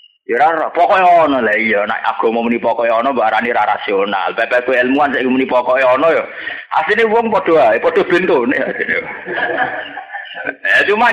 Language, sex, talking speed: Indonesian, male, 150 wpm